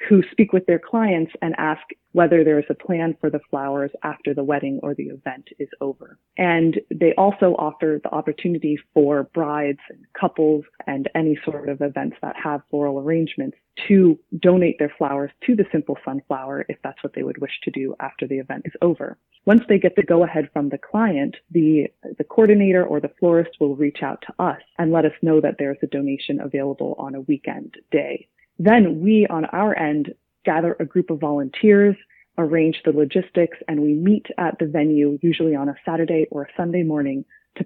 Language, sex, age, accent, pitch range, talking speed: English, female, 20-39, American, 145-175 Hz, 200 wpm